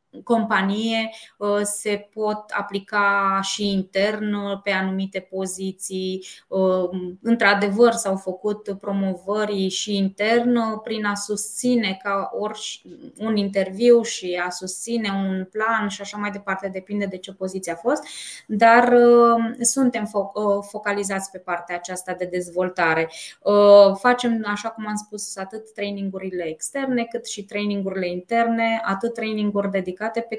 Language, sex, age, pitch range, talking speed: Romanian, female, 20-39, 190-215 Hz, 120 wpm